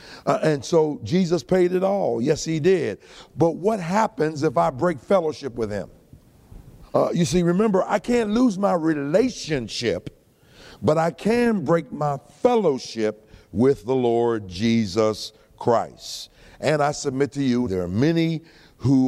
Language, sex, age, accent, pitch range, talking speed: English, male, 50-69, American, 130-180 Hz, 150 wpm